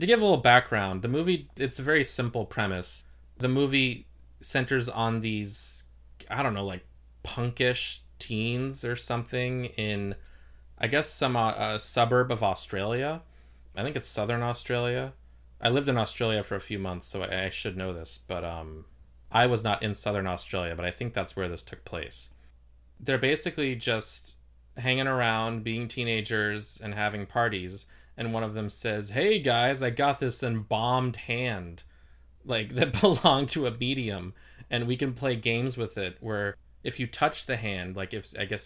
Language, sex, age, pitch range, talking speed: English, male, 20-39, 90-120 Hz, 175 wpm